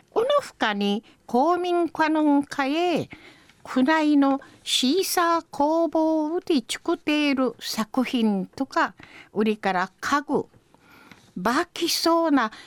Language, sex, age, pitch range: Japanese, female, 50-69, 230-335 Hz